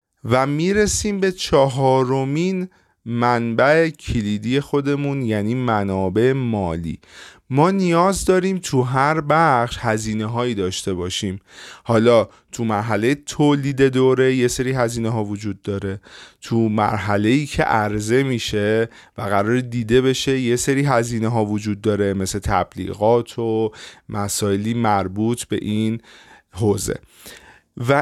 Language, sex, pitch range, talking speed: Persian, male, 110-145 Hz, 120 wpm